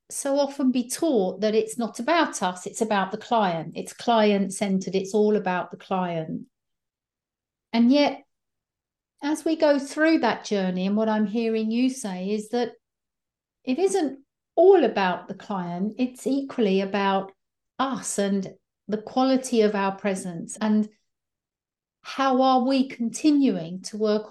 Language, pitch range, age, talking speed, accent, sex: English, 195-255 Hz, 50-69, 150 wpm, British, female